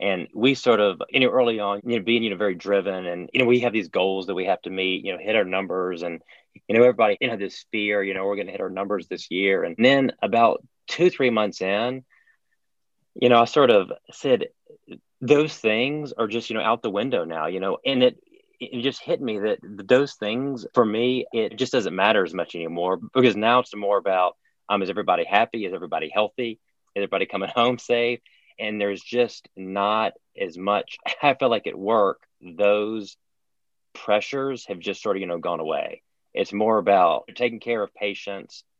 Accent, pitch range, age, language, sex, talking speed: American, 95-125 Hz, 30-49, English, male, 215 wpm